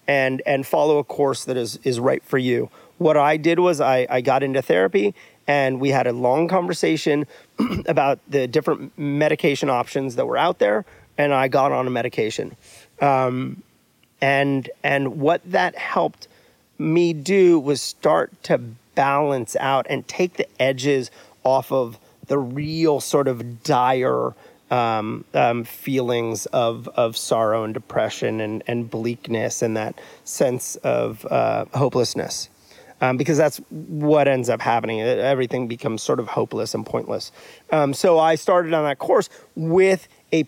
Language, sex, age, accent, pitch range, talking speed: English, male, 30-49, American, 125-160 Hz, 155 wpm